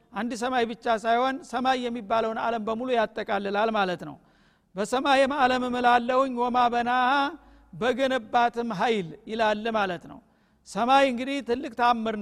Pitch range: 225-260 Hz